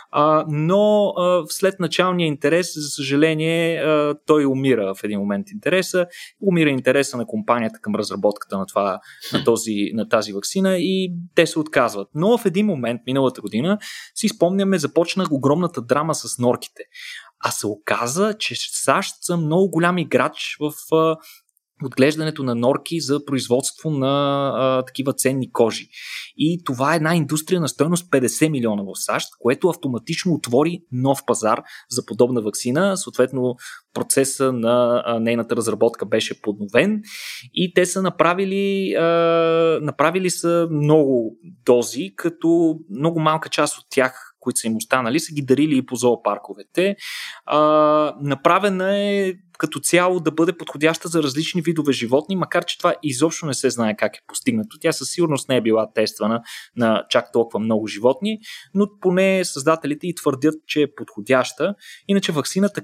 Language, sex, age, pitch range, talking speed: Bulgarian, male, 20-39, 130-175 Hz, 155 wpm